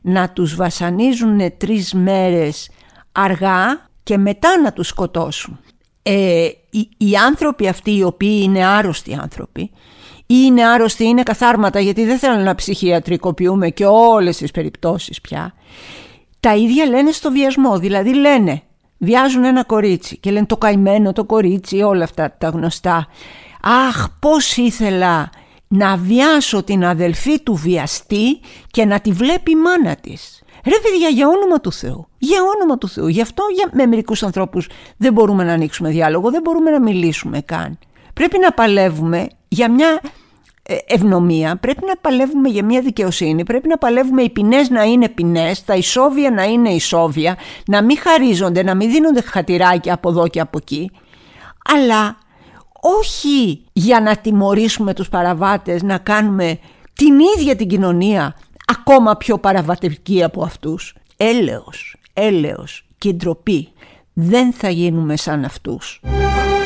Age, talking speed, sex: 50-69, 145 wpm, female